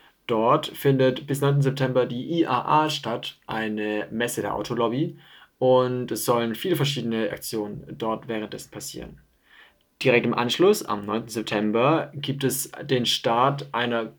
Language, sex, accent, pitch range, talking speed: German, male, German, 115-140 Hz, 135 wpm